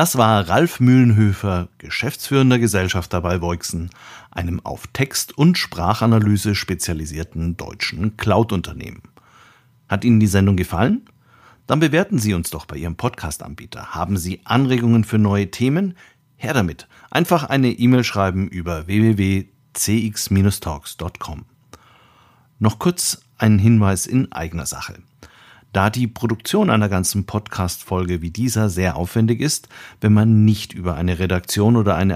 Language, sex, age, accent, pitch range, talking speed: German, male, 50-69, German, 90-120 Hz, 130 wpm